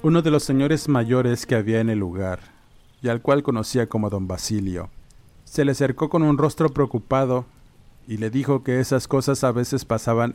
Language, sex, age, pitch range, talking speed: Spanish, male, 50-69, 105-135 Hz, 190 wpm